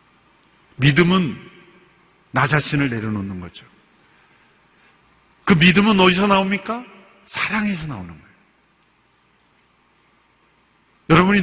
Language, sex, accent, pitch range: Korean, male, native, 150-195 Hz